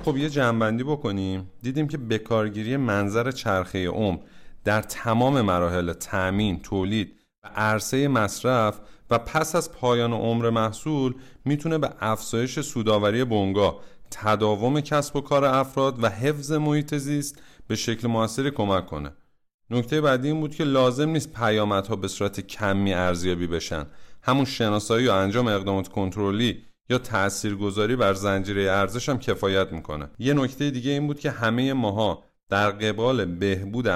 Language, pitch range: Persian, 100-130 Hz